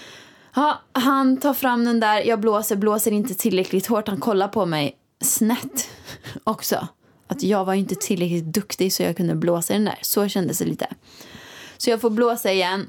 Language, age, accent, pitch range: Swedish, 20-39, native, 195-235 Hz